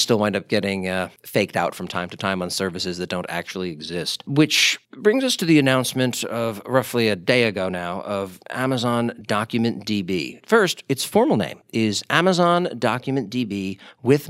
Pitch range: 105-140 Hz